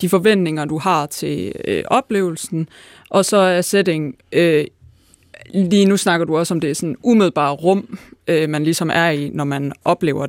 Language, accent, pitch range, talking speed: Danish, native, 160-190 Hz, 170 wpm